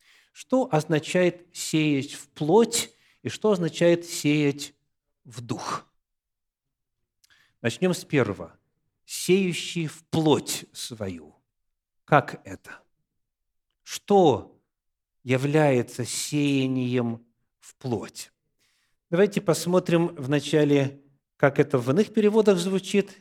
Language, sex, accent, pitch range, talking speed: Russian, male, native, 140-190 Hz, 90 wpm